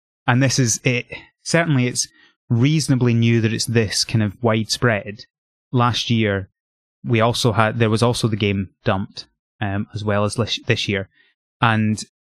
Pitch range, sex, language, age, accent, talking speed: 105-125 Hz, male, English, 20-39, British, 155 wpm